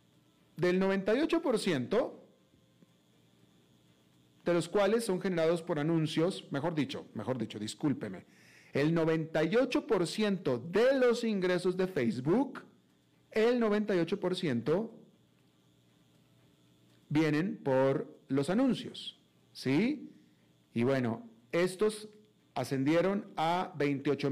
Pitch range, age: 130-180 Hz, 40-59